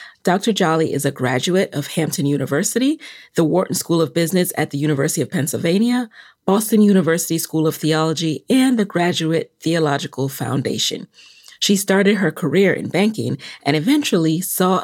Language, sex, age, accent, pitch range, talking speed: English, female, 30-49, American, 150-195 Hz, 150 wpm